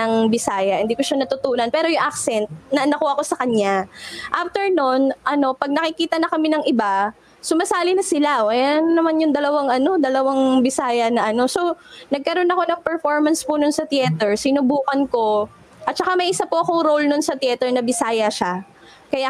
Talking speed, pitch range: 185 wpm, 225-305 Hz